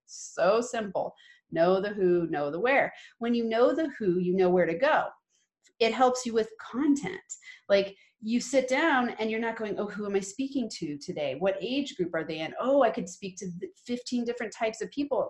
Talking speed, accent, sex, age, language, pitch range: 210 wpm, American, female, 30-49, English, 185-250 Hz